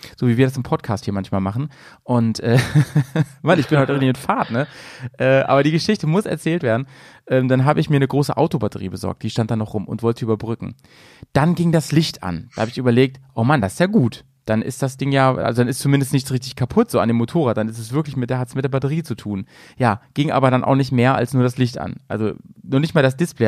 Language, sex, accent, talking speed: German, male, German, 265 wpm